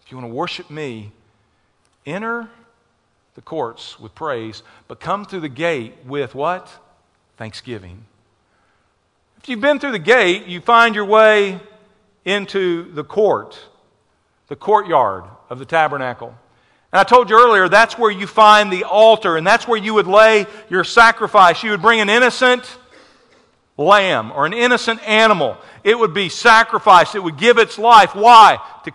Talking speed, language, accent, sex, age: 160 wpm, English, American, male, 50-69